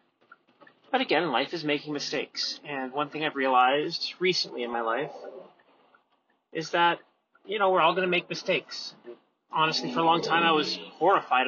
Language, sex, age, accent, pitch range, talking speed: English, male, 30-49, American, 140-175 Hz, 175 wpm